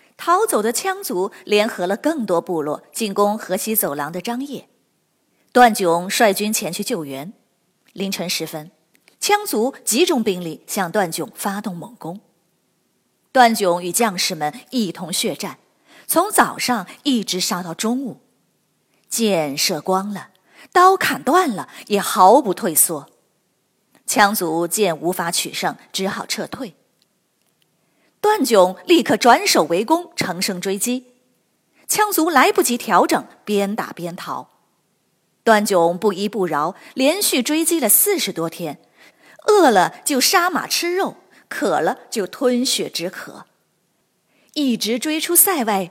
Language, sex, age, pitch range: Chinese, female, 30-49, 185-275 Hz